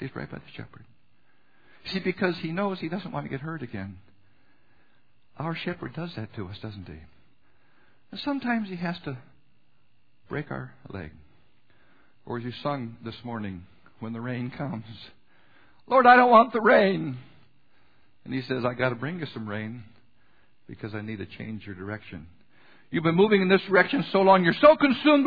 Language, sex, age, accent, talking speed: English, male, 60-79, American, 185 wpm